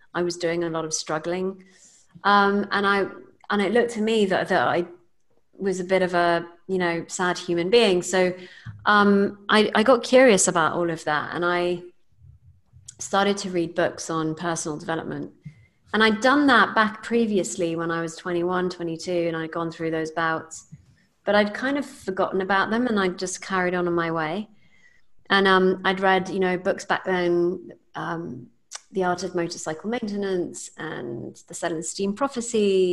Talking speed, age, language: 180 wpm, 30-49, English